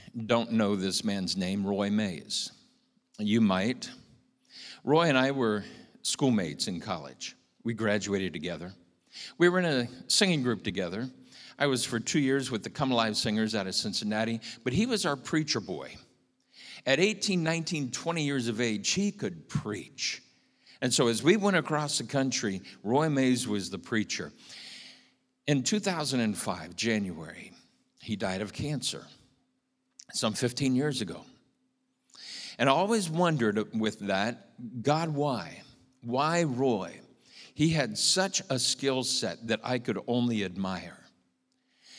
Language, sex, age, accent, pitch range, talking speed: English, male, 50-69, American, 110-160 Hz, 145 wpm